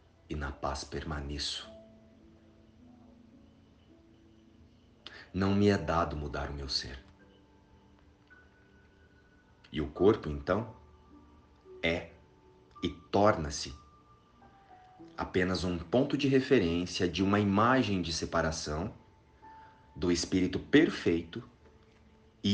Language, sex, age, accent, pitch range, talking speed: Portuguese, male, 40-59, Brazilian, 75-100 Hz, 90 wpm